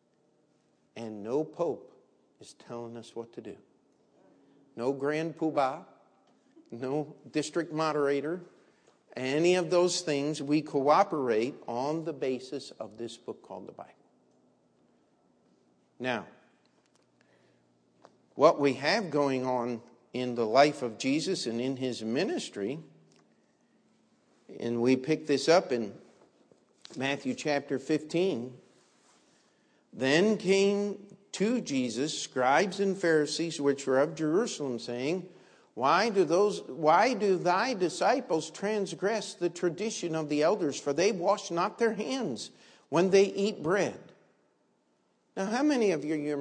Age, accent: 50-69, American